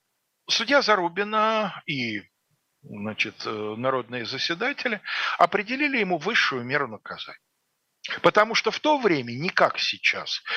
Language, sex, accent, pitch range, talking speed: Russian, male, native, 135-175 Hz, 110 wpm